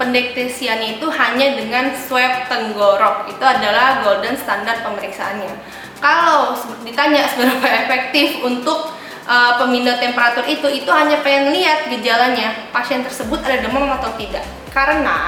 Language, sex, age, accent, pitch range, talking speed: Indonesian, female, 20-39, native, 225-280 Hz, 125 wpm